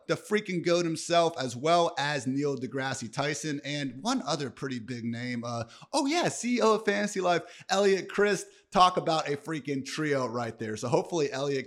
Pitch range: 115-160 Hz